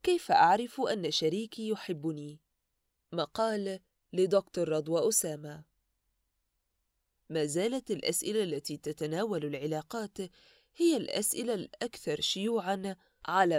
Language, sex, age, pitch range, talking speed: Arabic, female, 20-39, 155-225 Hz, 90 wpm